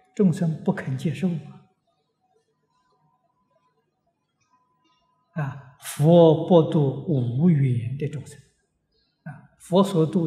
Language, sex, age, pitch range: Chinese, male, 60-79, 135-190 Hz